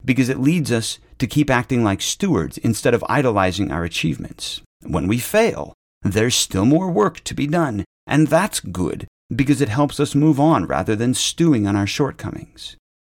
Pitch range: 100-150 Hz